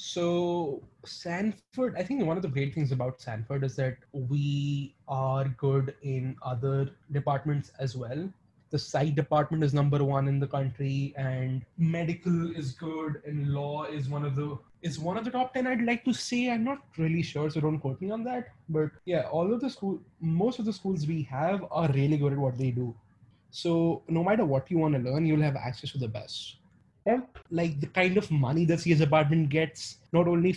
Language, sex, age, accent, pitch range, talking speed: English, male, 20-39, Indian, 135-160 Hz, 205 wpm